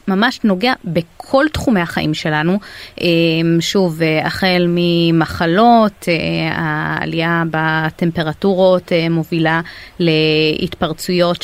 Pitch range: 160-195 Hz